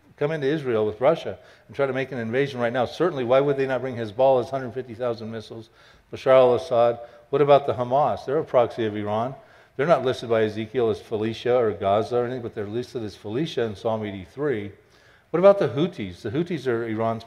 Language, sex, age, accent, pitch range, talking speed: English, male, 50-69, American, 115-135 Hz, 210 wpm